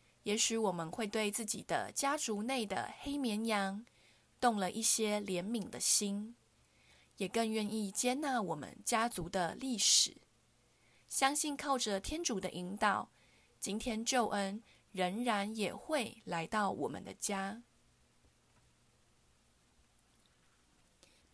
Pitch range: 190-240 Hz